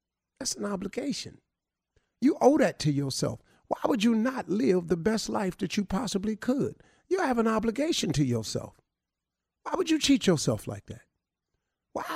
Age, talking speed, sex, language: 50-69, 170 wpm, male, English